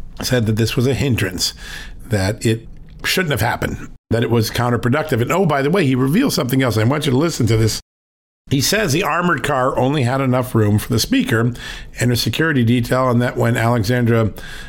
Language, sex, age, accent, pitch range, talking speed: English, male, 50-69, American, 115-140 Hz, 210 wpm